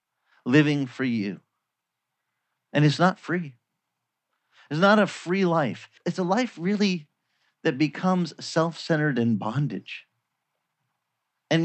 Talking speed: 115 wpm